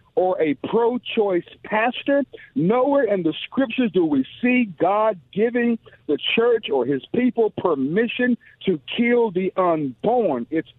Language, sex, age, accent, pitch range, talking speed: English, male, 50-69, American, 170-235 Hz, 135 wpm